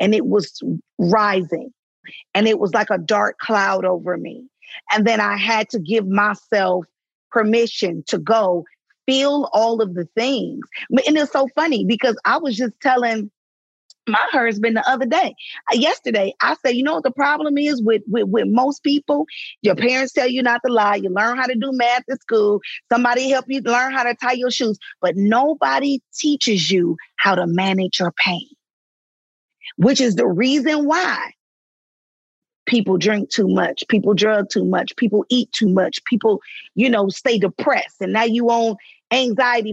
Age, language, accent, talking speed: 40-59, English, American, 175 wpm